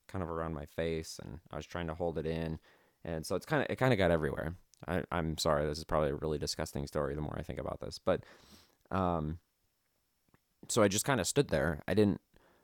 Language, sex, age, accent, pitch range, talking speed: English, male, 20-39, American, 80-95 Hz, 235 wpm